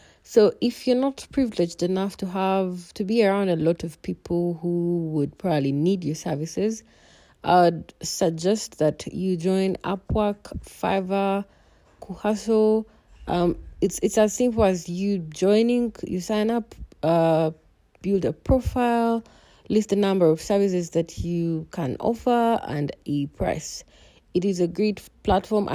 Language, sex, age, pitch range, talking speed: English, female, 30-49, 160-200 Hz, 140 wpm